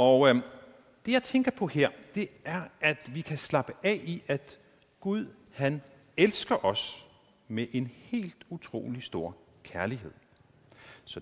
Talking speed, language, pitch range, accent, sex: 140 wpm, Danish, 115-185 Hz, native, male